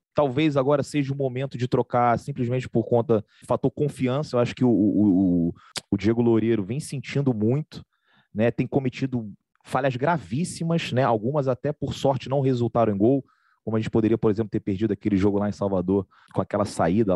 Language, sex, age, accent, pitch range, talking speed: Portuguese, male, 30-49, Brazilian, 110-140 Hz, 185 wpm